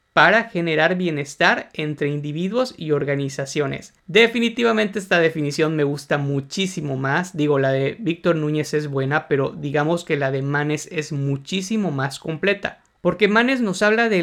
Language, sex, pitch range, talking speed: Spanish, male, 150-200 Hz, 150 wpm